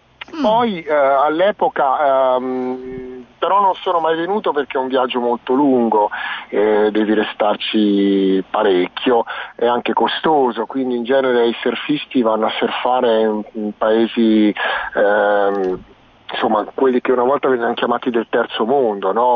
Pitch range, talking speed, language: 120-155 Hz, 145 wpm, Italian